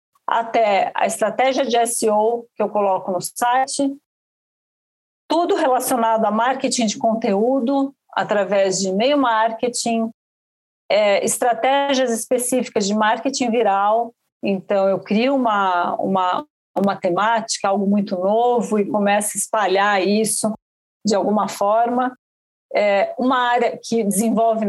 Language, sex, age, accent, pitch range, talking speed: Portuguese, female, 50-69, Brazilian, 200-250 Hz, 120 wpm